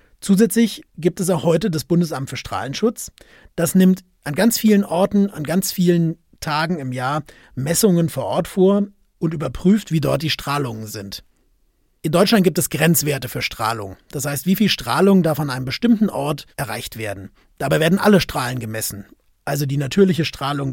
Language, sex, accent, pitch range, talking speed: German, male, German, 140-190 Hz, 175 wpm